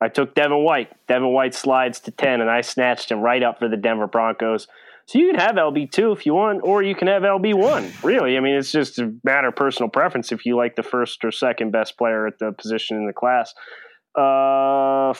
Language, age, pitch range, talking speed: English, 30-49, 120-140 Hz, 230 wpm